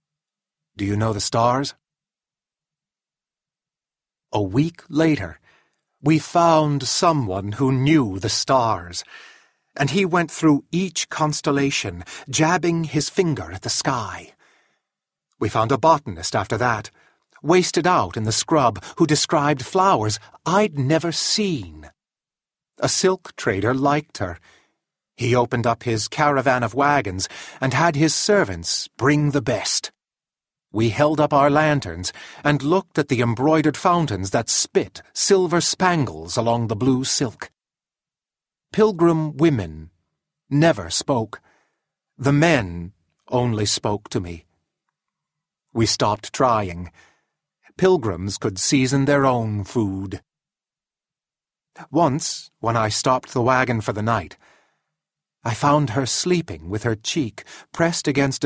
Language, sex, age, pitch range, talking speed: English, male, 40-59, 110-155 Hz, 120 wpm